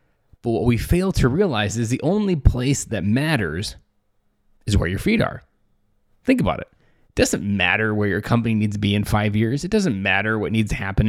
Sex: male